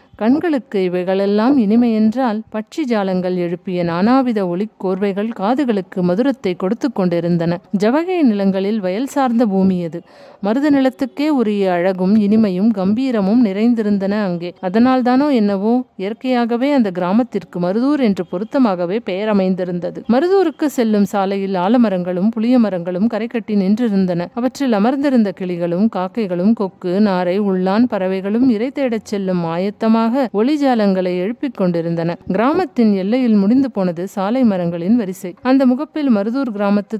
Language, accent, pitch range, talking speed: Tamil, native, 185-245 Hz, 115 wpm